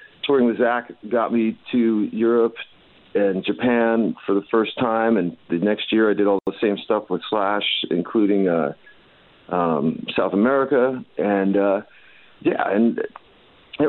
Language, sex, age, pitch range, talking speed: English, male, 40-59, 95-110 Hz, 150 wpm